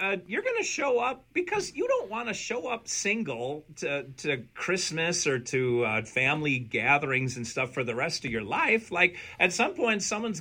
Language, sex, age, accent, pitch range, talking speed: English, male, 40-59, American, 115-180 Hz, 200 wpm